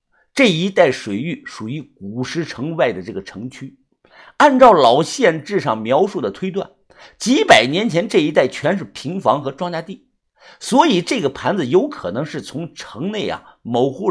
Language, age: Chinese, 50-69